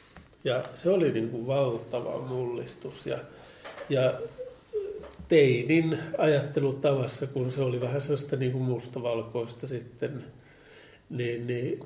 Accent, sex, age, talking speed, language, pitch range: native, male, 50-69, 105 wpm, Finnish, 120-140 Hz